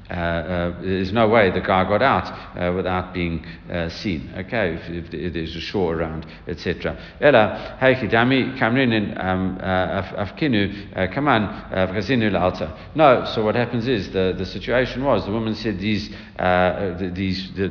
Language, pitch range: English, 90-110 Hz